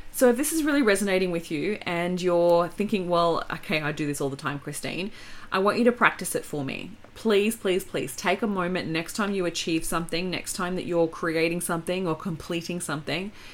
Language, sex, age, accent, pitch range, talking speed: English, female, 30-49, Australian, 165-210 Hz, 215 wpm